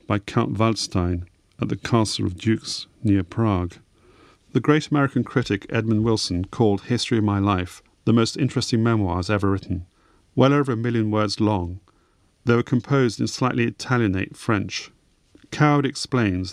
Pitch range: 100-120 Hz